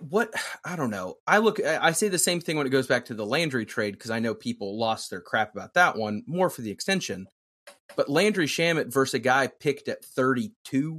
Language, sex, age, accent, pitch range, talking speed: English, male, 30-49, American, 120-170 Hz, 230 wpm